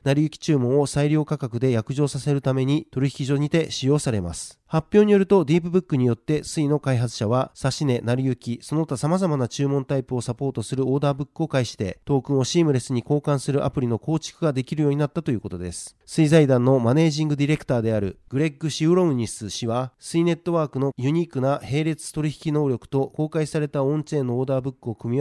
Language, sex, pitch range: Japanese, male, 130-155 Hz